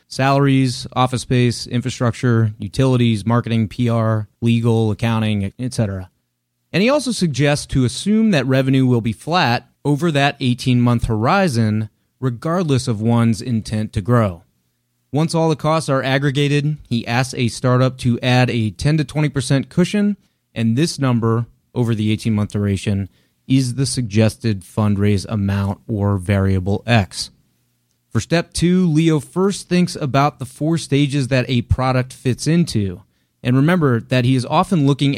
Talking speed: 145 wpm